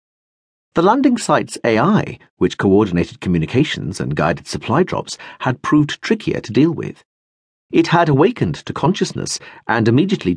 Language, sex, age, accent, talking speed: English, male, 50-69, British, 140 wpm